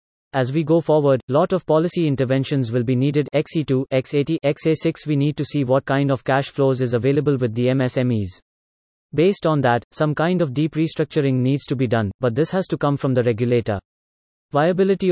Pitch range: 125-150 Hz